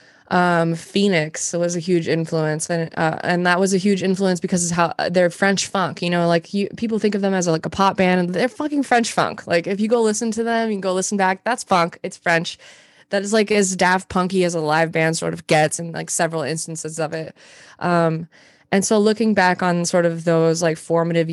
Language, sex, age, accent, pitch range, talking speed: English, female, 20-39, American, 165-195 Hz, 240 wpm